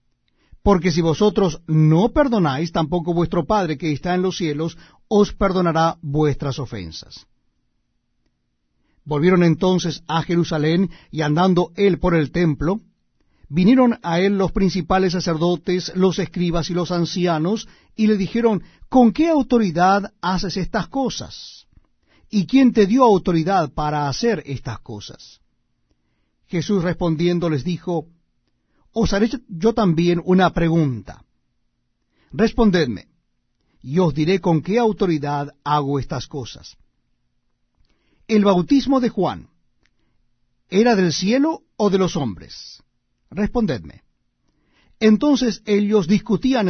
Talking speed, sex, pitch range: 115 wpm, male, 155-205 Hz